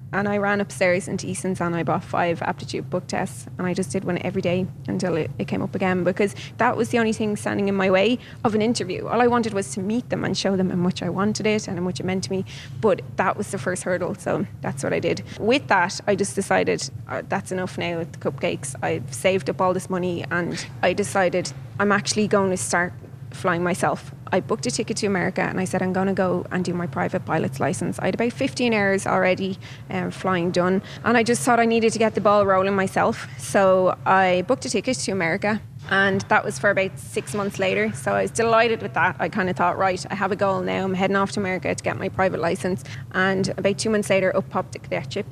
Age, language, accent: 20-39, English, Irish